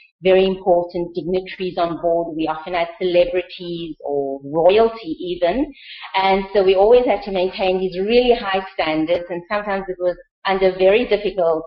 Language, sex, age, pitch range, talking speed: English, female, 30-49, 185-230 Hz, 155 wpm